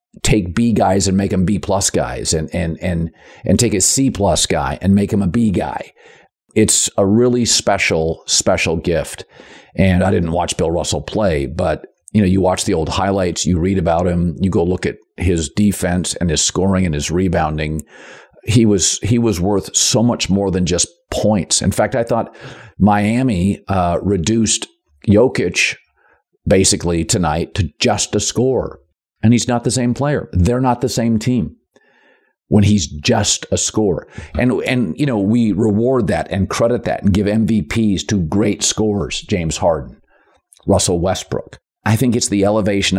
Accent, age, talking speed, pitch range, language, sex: American, 50-69, 175 wpm, 90-110 Hz, English, male